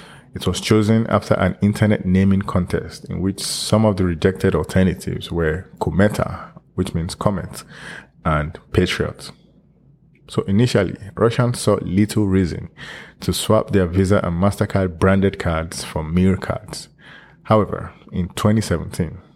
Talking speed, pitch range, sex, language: 125 wpm, 85-100 Hz, male, English